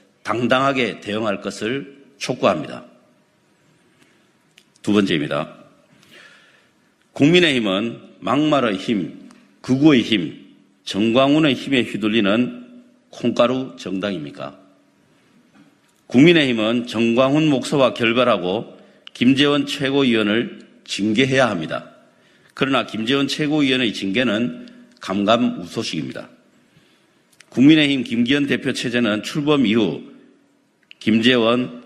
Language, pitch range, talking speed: English, 120-150 Hz, 70 wpm